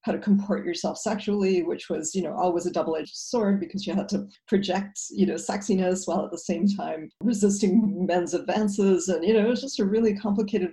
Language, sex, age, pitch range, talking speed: English, female, 50-69, 180-210 Hz, 215 wpm